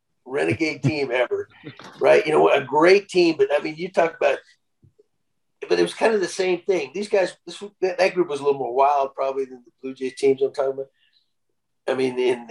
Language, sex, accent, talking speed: English, male, American, 220 wpm